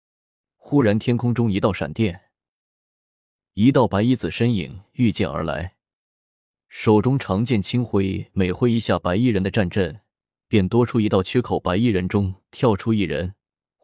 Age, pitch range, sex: 20-39, 95-115 Hz, male